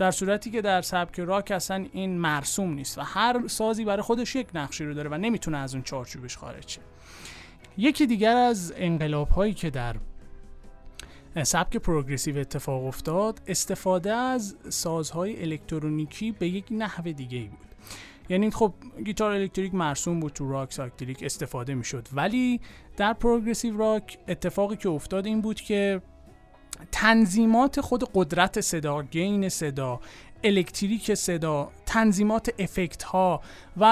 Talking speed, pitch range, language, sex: 140 wpm, 155-220 Hz, Persian, male